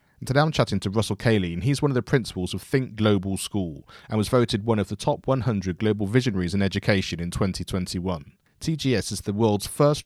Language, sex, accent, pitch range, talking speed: English, male, British, 95-120 Hz, 210 wpm